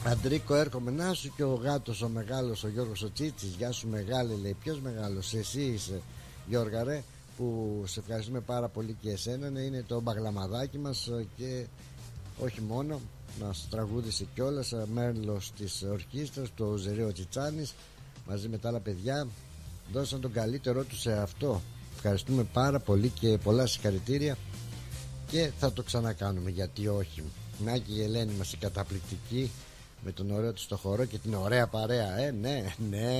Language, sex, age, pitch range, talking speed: Greek, male, 60-79, 105-130 Hz, 155 wpm